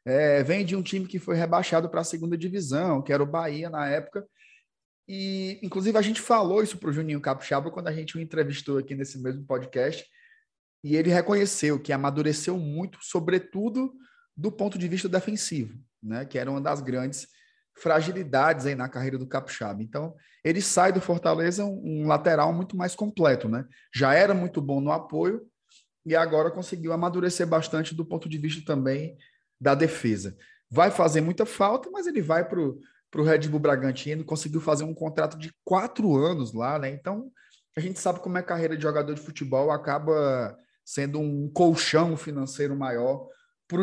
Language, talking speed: Portuguese, 180 wpm